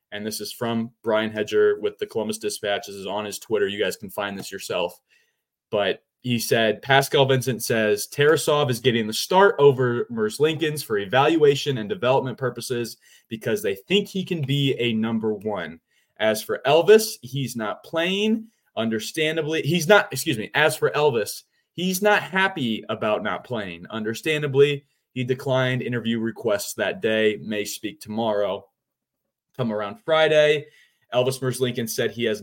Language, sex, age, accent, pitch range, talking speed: English, male, 20-39, American, 110-185 Hz, 165 wpm